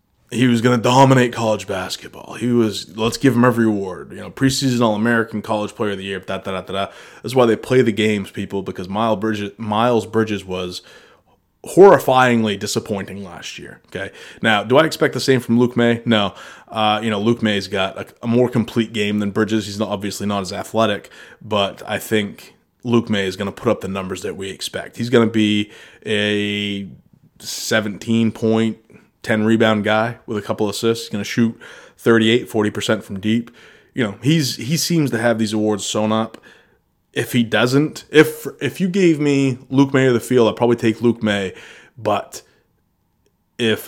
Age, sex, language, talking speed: 20-39, male, English, 185 wpm